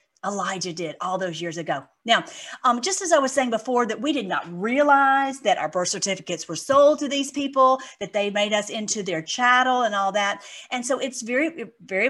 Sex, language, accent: female, English, American